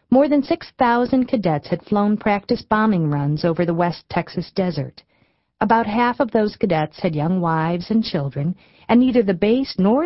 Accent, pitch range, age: American, 165-240 Hz, 40-59